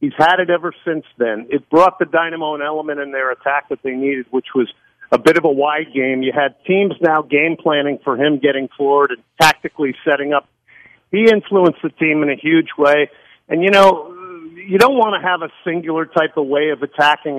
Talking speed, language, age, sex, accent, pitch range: 215 wpm, English, 50-69, male, American, 145-180 Hz